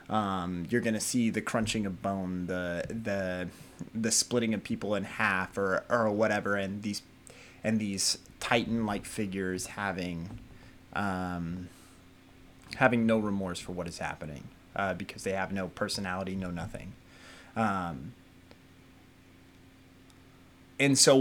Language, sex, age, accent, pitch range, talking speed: English, male, 30-49, American, 90-120 Hz, 125 wpm